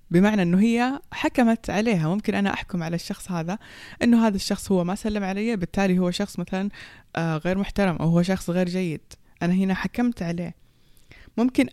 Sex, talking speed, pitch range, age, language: female, 175 wpm, 175-220 Hz, 20-39, Persian